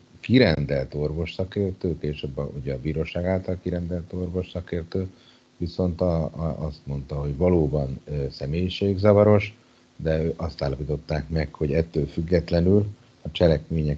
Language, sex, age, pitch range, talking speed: Hungarian, male, 60-79, 70-85 Hz, 120 wpm